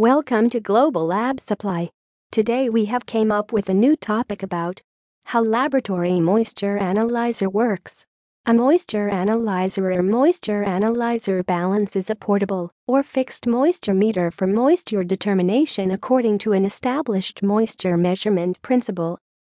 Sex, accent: female, American